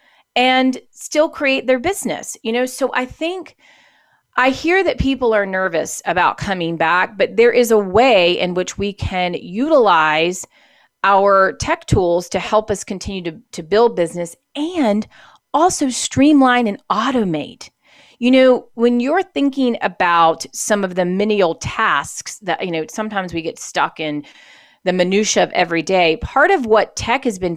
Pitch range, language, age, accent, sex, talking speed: 185-255 Hz, English, 30-49, American, female, 165 wpm